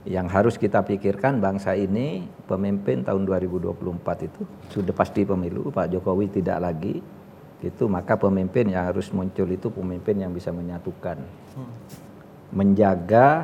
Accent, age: native, 50-69